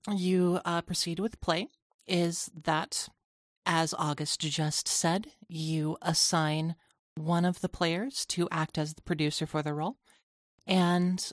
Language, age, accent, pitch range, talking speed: English, 30-49, American, 150-175 Hz, 140 wpm